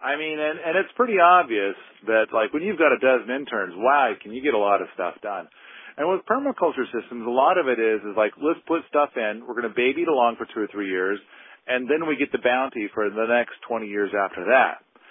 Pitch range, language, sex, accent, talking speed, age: 115-145 Hz, English, male, American, 250 wpm, 40-59